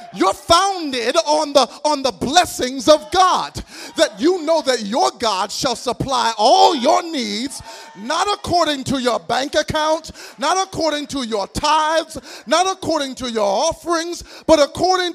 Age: 30-49